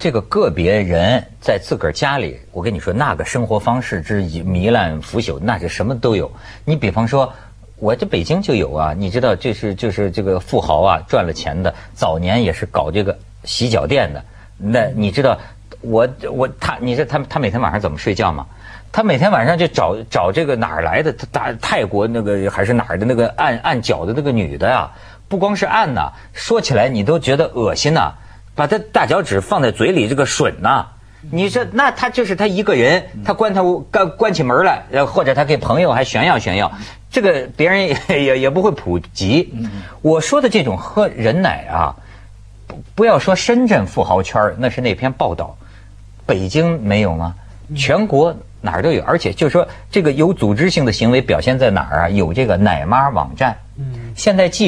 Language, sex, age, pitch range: Chinese, male, 50-69, 100-150 Hz